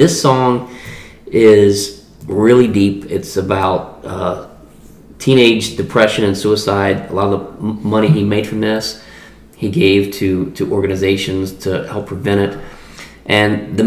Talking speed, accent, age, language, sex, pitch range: 140 wpm, American, 30-49, English, male, 95-110 Hz